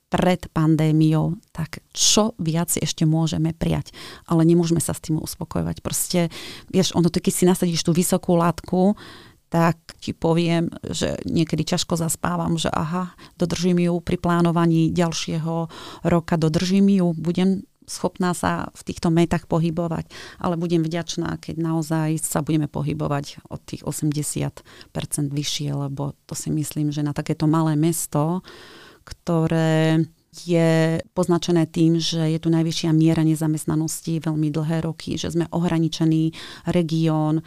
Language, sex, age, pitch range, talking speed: Slovak, female, 30-49, 160-170 Hz, 135 wpm